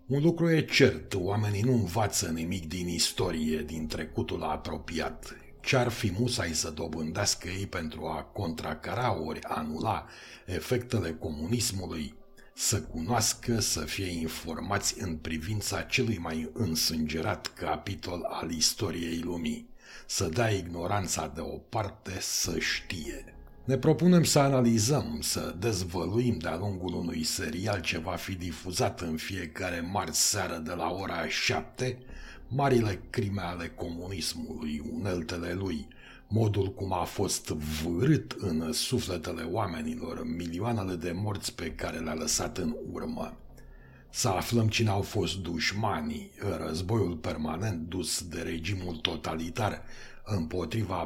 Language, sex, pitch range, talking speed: Romanian, male, 80-115 Hz, 120 wpm